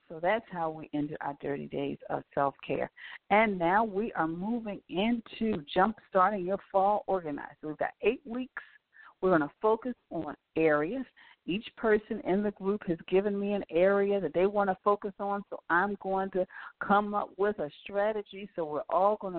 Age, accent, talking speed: 50-69, American, 185 wpm